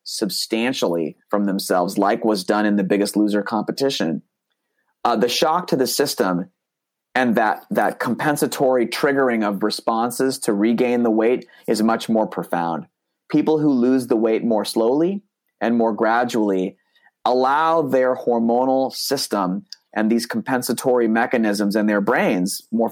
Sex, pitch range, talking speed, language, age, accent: male, 110-130 Hz, 140 wpm, English, 30-49, American